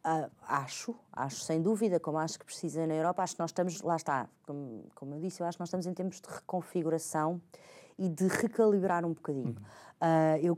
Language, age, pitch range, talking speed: Portuguese, 20-39, 155-185 Hz, 210 wpm